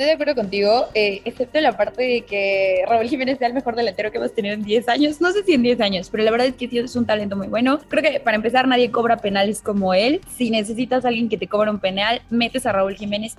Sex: female